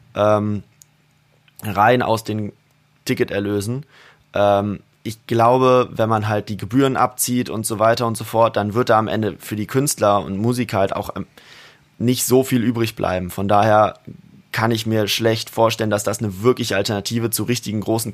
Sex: male